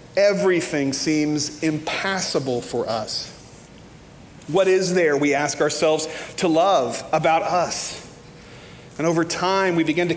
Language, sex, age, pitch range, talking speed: English, male, 40-59, 140-180 Hz, 125 wpm